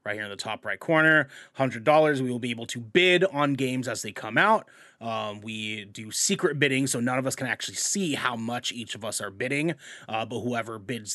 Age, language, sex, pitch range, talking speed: 30-49, English, male, 115-155 Hz, 230 wpm